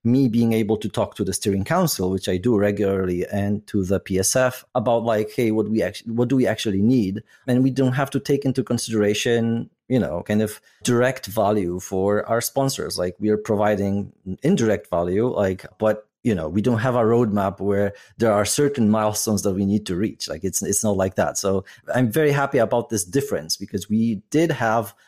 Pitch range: 100-125 Hz